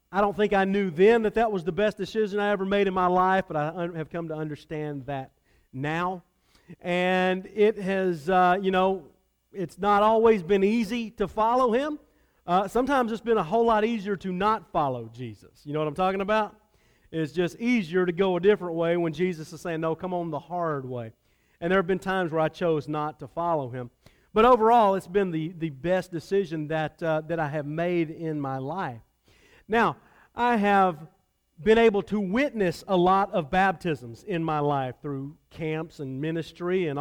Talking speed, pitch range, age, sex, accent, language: 200 wpm, 160-210 Hz, 40-59, male, American, English